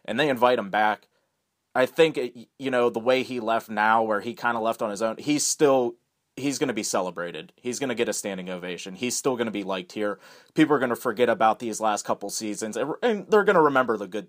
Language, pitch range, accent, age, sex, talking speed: English, 100-125 Hz, American, 30-49, male, 260 wpm